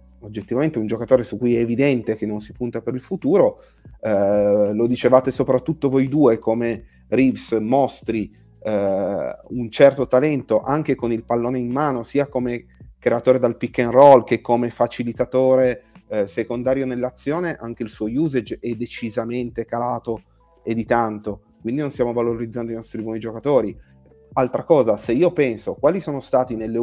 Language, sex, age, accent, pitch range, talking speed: Italian, male, 30-49, native, 115-135 Hz, 165 wpm